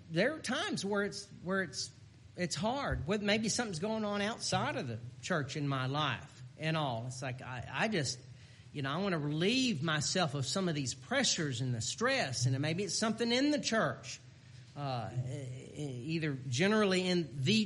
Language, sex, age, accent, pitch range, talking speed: English, male, 40-59, American, 130-200 Hz, 185 wpm